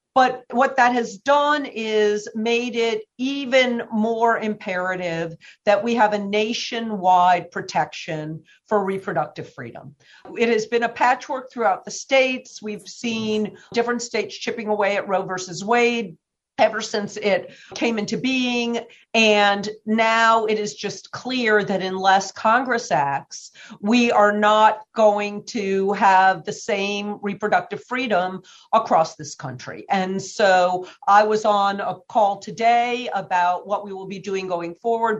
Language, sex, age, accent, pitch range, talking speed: English, female, 50-69, American, 200-240 Hz, 140 wpm